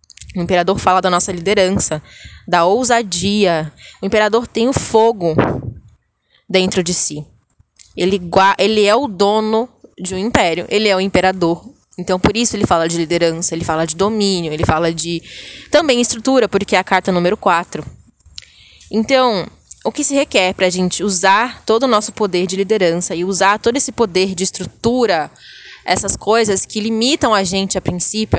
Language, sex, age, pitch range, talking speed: Portuguese, female, 20-39, 175-220 Hz, 165 wpm